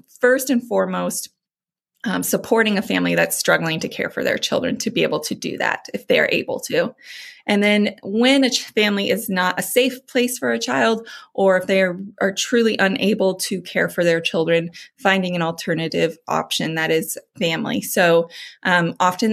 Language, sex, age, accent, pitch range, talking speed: English, female, 20-39, American, 165-220 Hz, 185 wpm